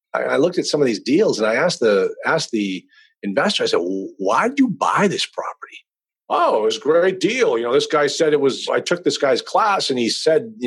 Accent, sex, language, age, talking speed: American, male, English, 40-59, 240 wpm